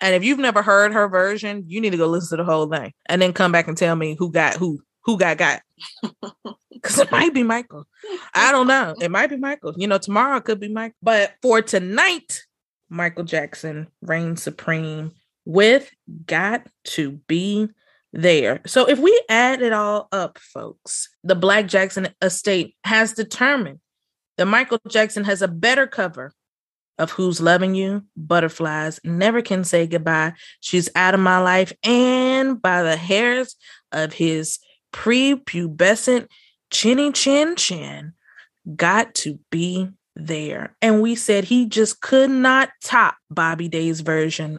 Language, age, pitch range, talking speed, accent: English, 20-39, 170-240 Hz, 160 wpm, American